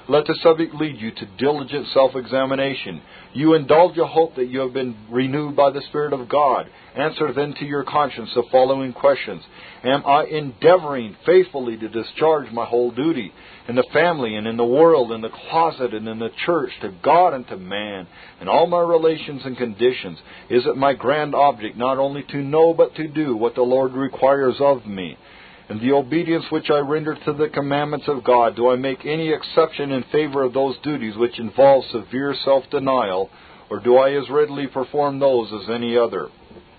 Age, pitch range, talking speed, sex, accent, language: 50-69, 125-150 Hz, 190 wpm, male, American, English